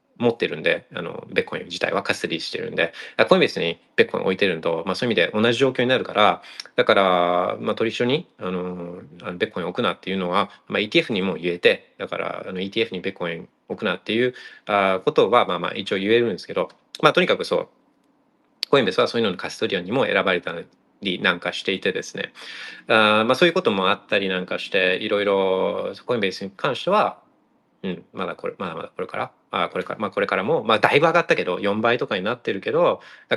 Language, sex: Japanese, male